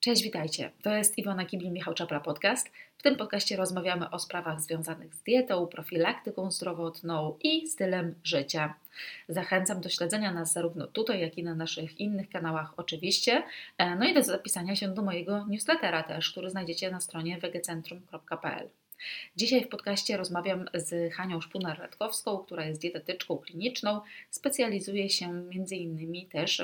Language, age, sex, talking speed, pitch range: Polish, 30-49, female, 150 wpm, 170-205 Hz